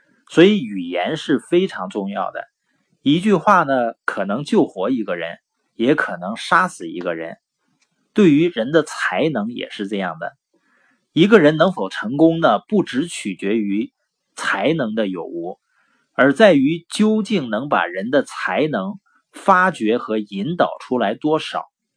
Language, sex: Chinese, male